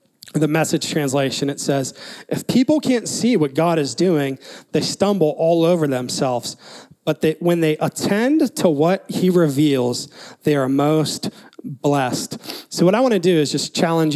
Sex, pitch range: male, 145-175 Hz